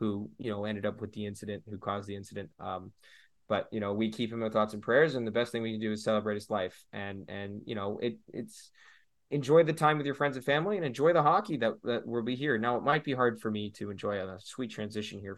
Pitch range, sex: 105-140 Hz, male